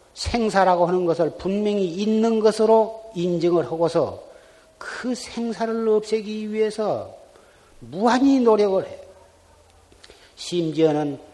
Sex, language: male, Korean